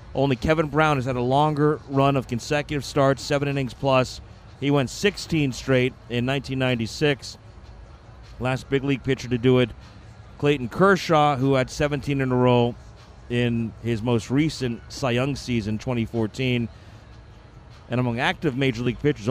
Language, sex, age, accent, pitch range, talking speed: English, male, 40-59, American, 115-145 Hz, 150 wpm